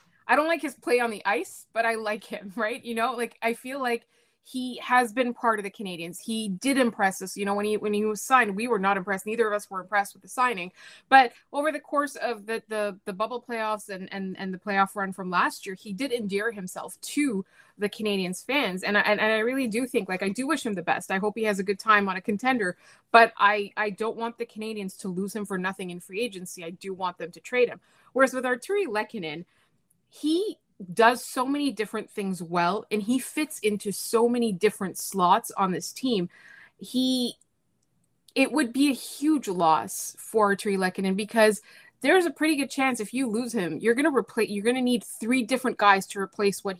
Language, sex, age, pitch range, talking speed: English, female, 20-39, 195-245 Hz, 230 wpm